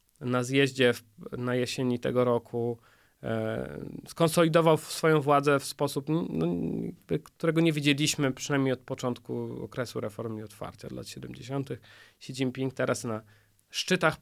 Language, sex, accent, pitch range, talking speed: Polish, male, native, 130-170 Hz, 120 wpm